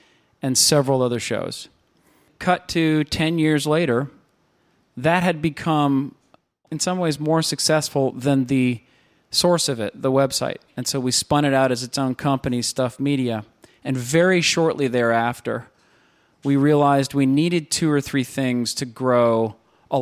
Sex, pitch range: male, 120-145 Hz